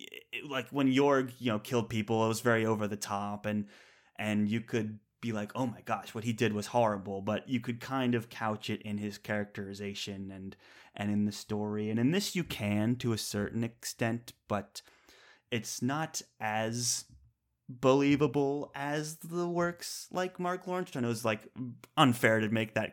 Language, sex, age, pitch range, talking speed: English, male, 20-39, 105-125 Hz, 185 wpm